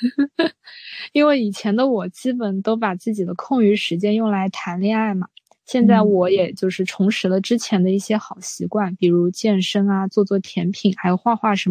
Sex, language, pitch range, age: female, Chinese, 185-220 Hz, 20-39